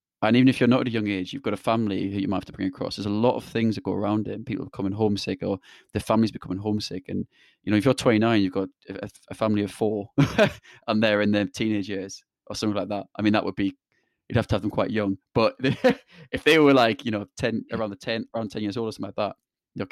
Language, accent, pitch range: English, British, 100-120 Hz